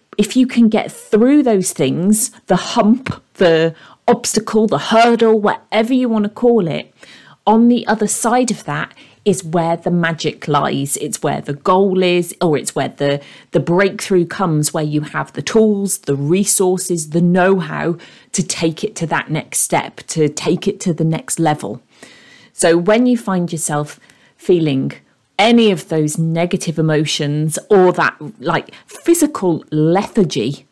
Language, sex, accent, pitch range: English, female, British, 155-210 Hz